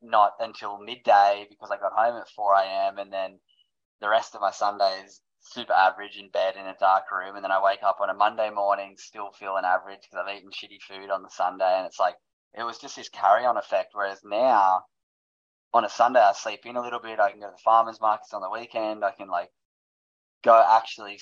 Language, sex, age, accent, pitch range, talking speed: English, male, 10-29, Australian, 95-110 Hz, 225 wpm